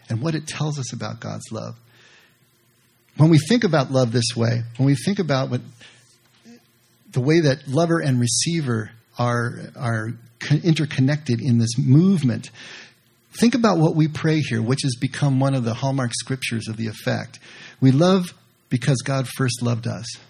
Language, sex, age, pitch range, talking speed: English, male, 50-69, 120-150 Hz, 165 wpm